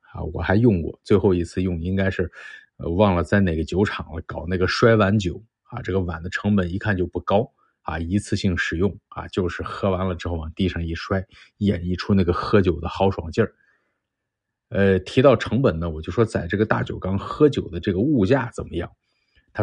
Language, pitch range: Chinese, 85-105 Hz